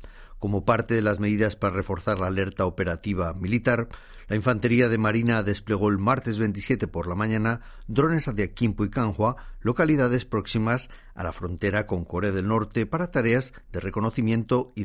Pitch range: 100-125 Hz